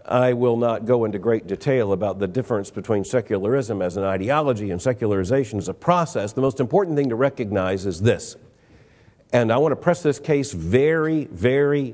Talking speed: 185 wpm